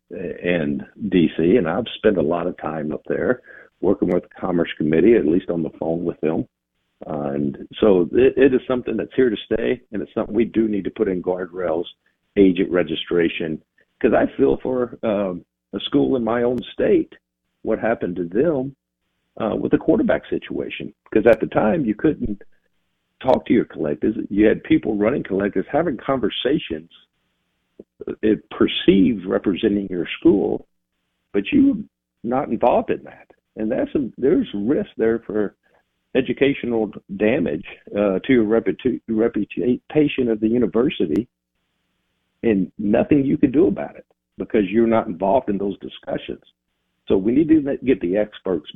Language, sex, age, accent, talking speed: English, male, 60-79, American, 165 wpm